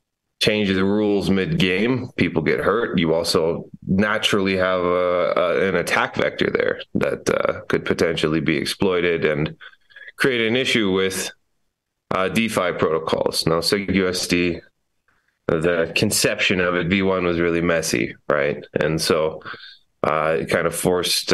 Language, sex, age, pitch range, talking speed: English, male, 20-39, 85-100 Hz, 140 wpm